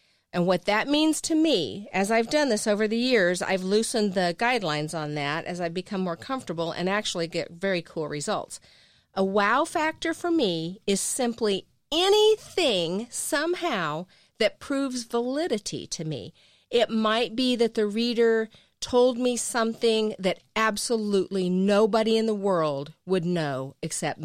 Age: 40-59